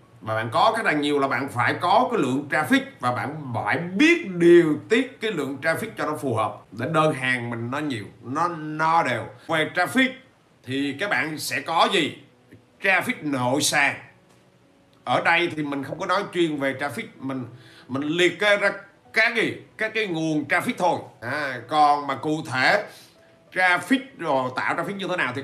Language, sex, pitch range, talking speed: Vietnamese, male, 135-185 Hz, 195 wpm